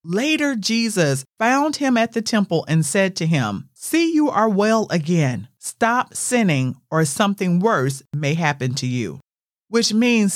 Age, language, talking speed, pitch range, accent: 40-59, English, 155 wpm, 155-220 Hz, American